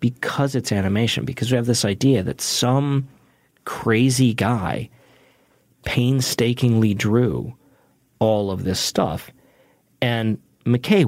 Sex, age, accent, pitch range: male, 40-59, American, 100-130 Hz